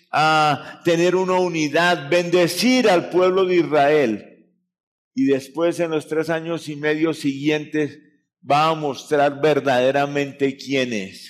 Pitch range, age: 145-180 Hz, 50-69